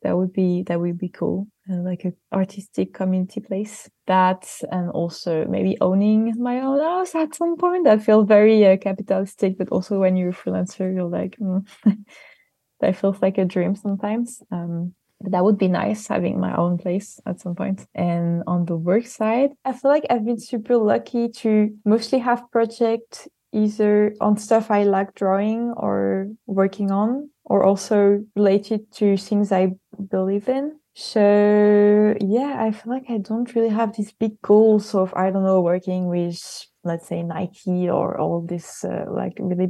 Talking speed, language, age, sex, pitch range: 175 wpm, English, 20-39, female, 185-225 Hz